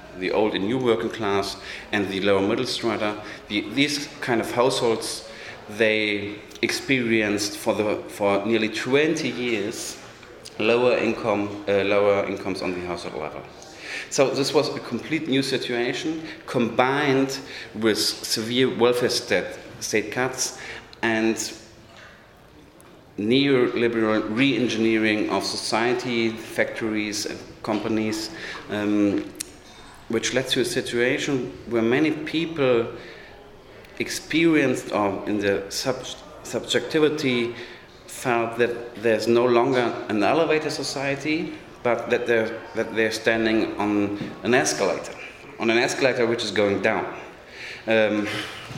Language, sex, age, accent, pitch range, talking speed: English, male, 40-59, German, 105-125 Hz, 115 wpm